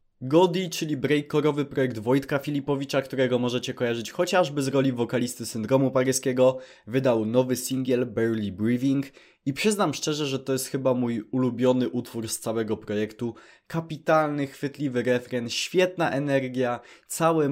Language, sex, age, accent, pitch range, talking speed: Polish, male, 20-39, native, 115-145 Hz, 135 wpm